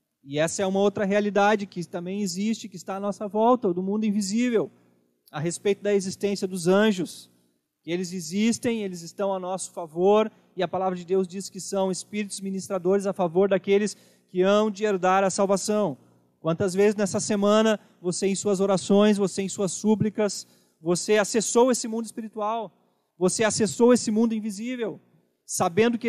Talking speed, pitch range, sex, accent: 170 wpm, 185-215 Hz, male, Brazilian